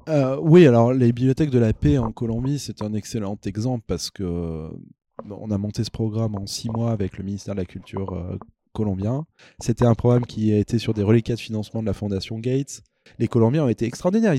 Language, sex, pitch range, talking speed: French, male, 110-135 Hz, 215 wpm